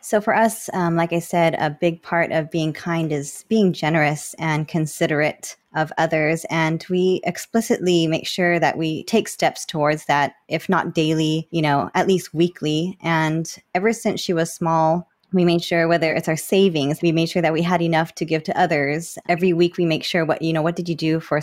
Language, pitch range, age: English, 160-180 Hz, 20-39